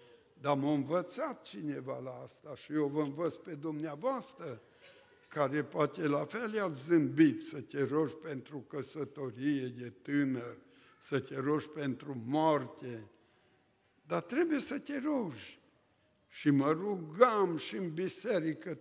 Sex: male